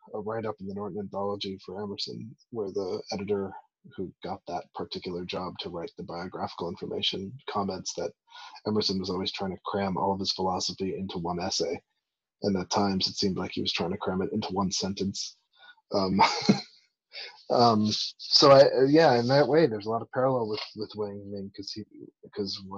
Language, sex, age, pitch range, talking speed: English, male, 30-49, 100-110 Hz, 185 wpm